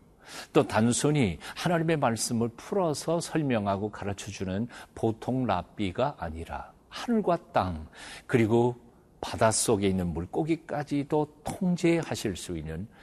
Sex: male